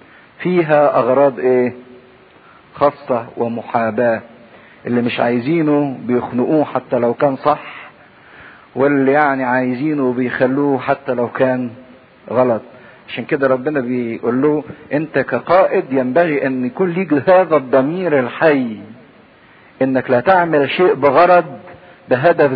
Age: 50-69